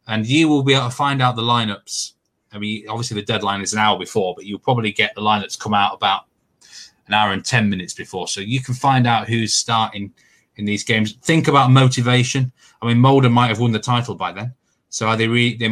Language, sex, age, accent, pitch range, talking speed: English, male, 20-39, British, 105-125 Hz, 235 wpm